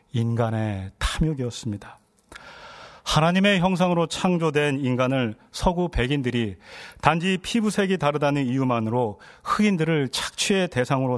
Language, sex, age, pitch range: Korean, male, 40-59, 115-160 Hz